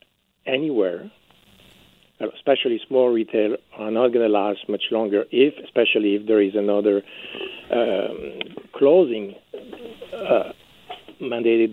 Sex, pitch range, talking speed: male, 110-165 Hz, 105 wpm